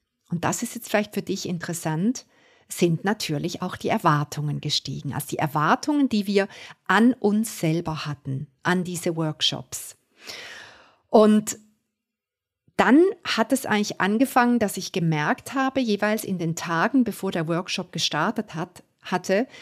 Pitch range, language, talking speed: 170-215 Hz, German, 140 wpm